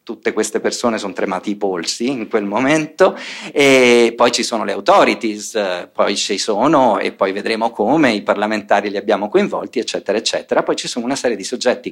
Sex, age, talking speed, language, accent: male, 40-59, 185 wpm, Italian, native